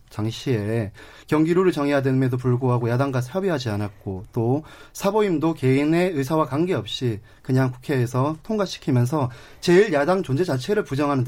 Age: 30-49